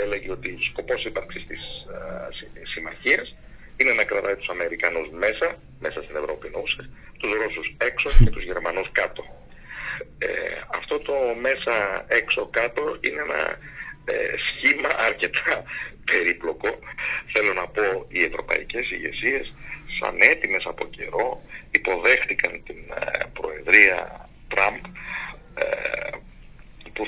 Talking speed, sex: 110 wpm, male